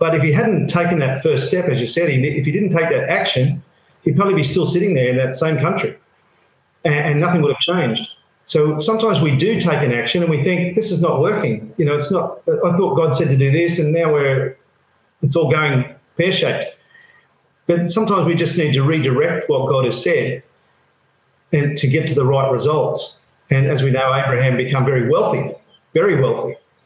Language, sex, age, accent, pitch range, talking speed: English, male, 50-69, Australian, 135-165 Hz, 210 wpm